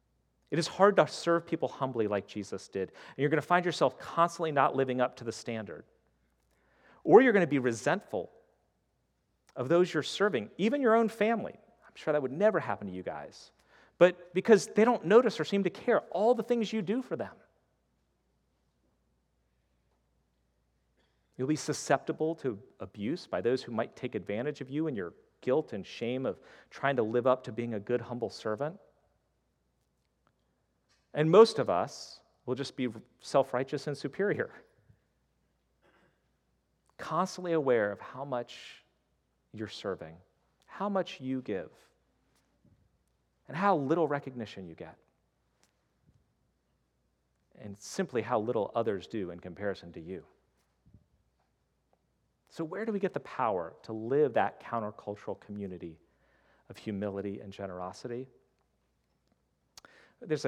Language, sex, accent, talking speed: English, male, American, 145 wpm